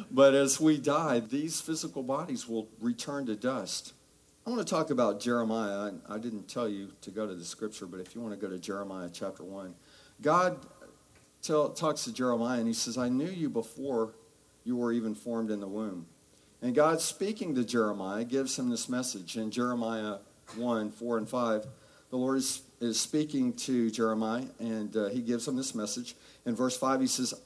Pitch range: 110-140 Hz